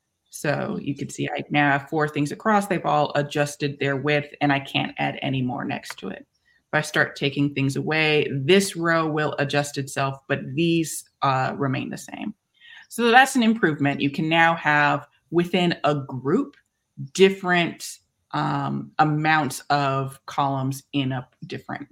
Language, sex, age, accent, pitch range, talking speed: English, female, 20-39, American, 140-180 Hz, 165 wpm